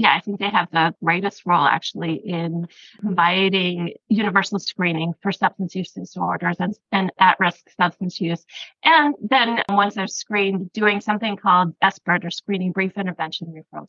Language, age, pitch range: English, 30-49, 170-200 Hz